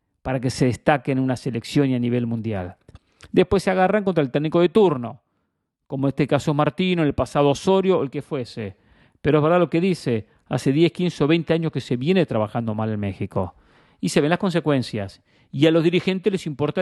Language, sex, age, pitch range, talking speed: English, male, 40-59, 125-160 Hz, 215 wpm